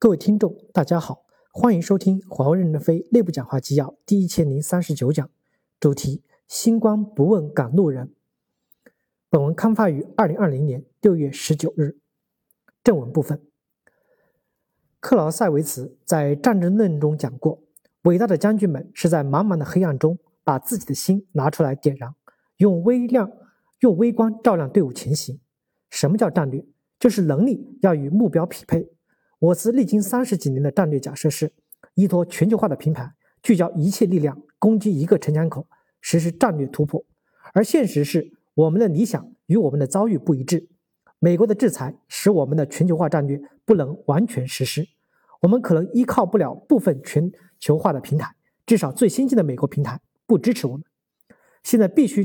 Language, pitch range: Chinese, 150-215 Hz